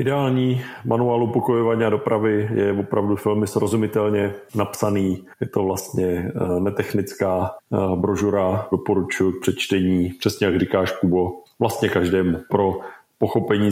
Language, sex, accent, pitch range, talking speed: Czech, male, native, 95-105 Hz, 110 wpm